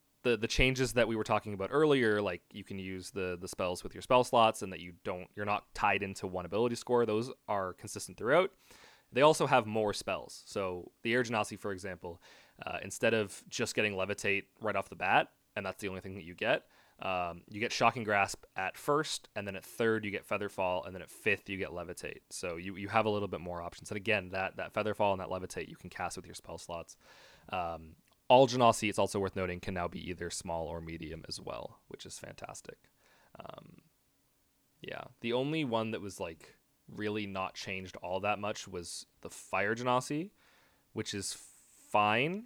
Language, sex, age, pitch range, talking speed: English, male, 20-39, 95-115 Hz, 210 wpm